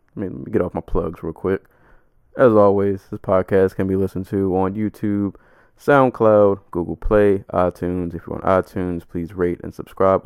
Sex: male